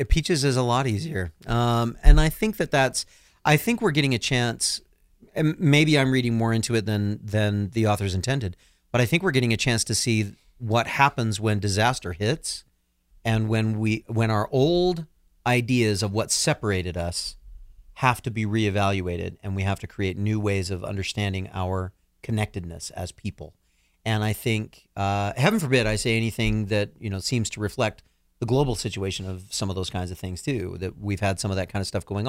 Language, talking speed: English, 200 wpm